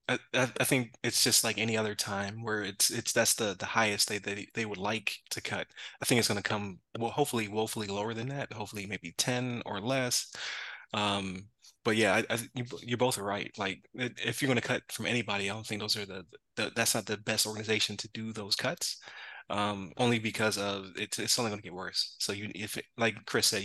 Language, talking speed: English, 220 wpm